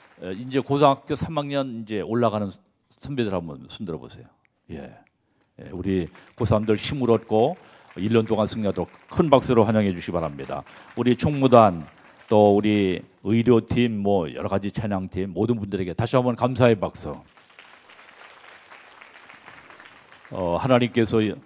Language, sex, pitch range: Korean, male, 95-120 Hz